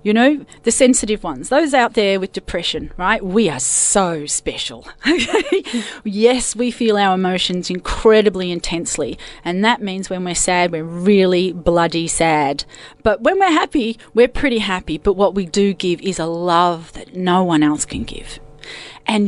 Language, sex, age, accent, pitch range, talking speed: English, female, 40-59, Australian, 160-215 Hz, 170 wpm